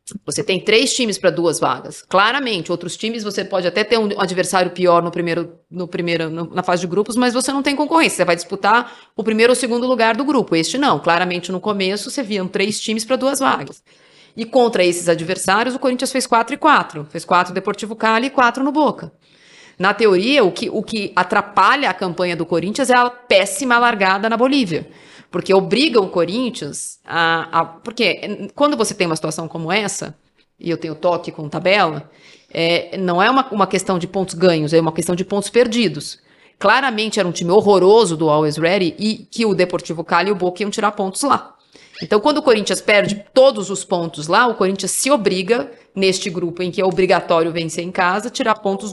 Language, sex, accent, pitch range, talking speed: Portuguese, female, Brazilian, 175-230 Hz, 205 wpm